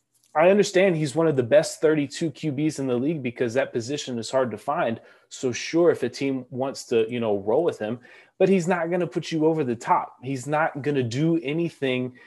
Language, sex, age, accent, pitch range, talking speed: English, male, 20-39, American, 125-155 Hz, 230 wpm